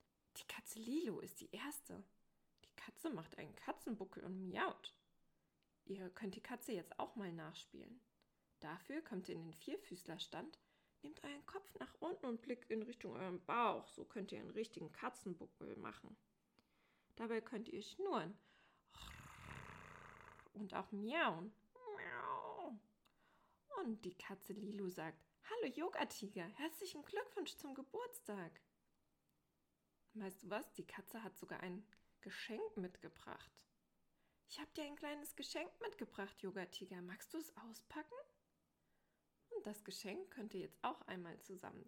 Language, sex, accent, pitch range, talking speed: German, female, German, 190-300 Hz, 135 wpm